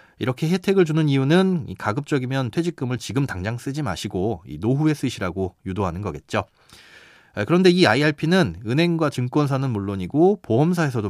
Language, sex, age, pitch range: Korean, male, 30-49, 110-160 Hz